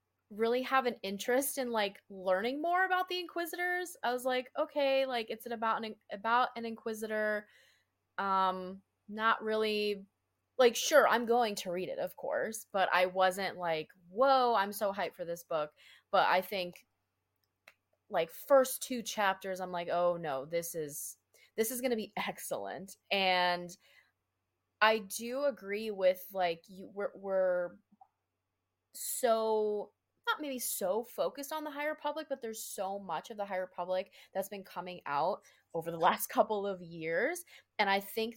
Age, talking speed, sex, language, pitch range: 20-39, 160 wpm, female, English, 180-235 Hz